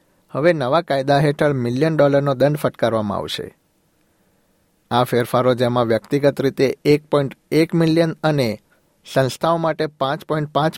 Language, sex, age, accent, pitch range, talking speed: Gujarati, male, 60-79, native, 130-155 Hz, 115 wpm